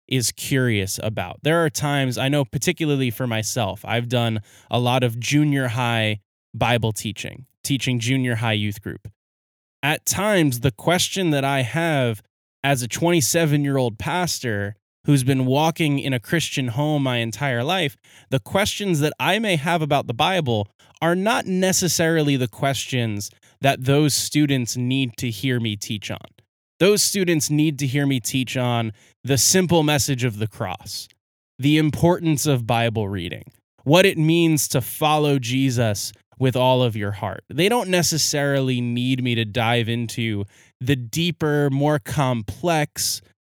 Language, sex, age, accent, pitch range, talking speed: English, male, 20-39, American, 115-155 Hz, 155 wpm